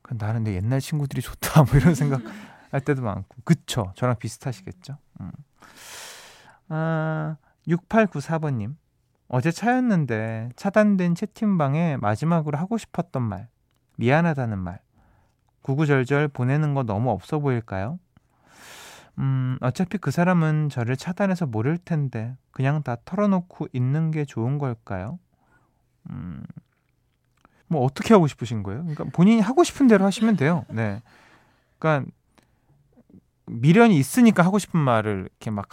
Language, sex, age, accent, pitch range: Korean, male, 20-39, native, 115-160 Hz